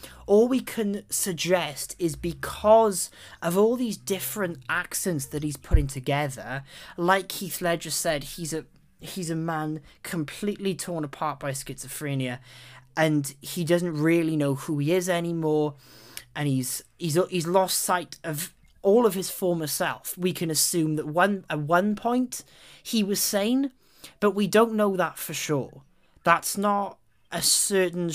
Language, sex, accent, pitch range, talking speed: English, male, British, 145-190 Hz, 155 wpm